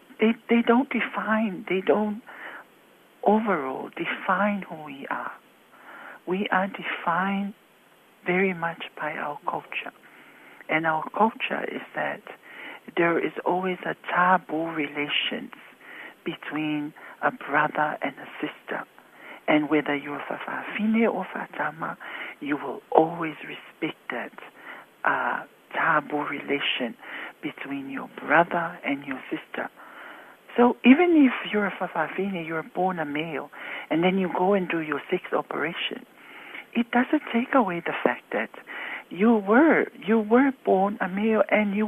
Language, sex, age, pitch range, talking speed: English, male, 60-79, 180-235 Hz, 130 wpm